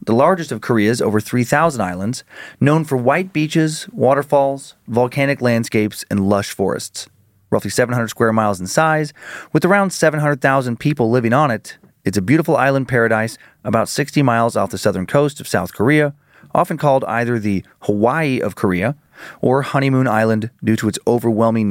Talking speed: 165 wpm